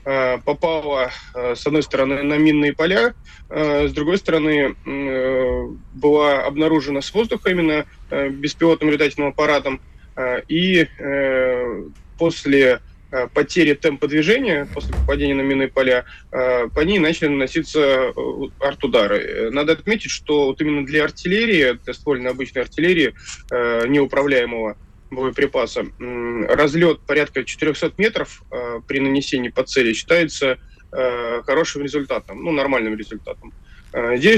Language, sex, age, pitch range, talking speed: Russian, male, 20-39, 130-155 Hz, 105 wpm